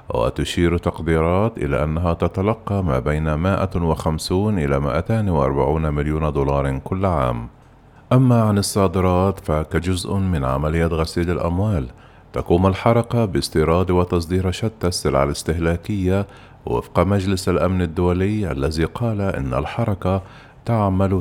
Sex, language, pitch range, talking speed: male, Arabic, 80-100 Hz, 110 wpm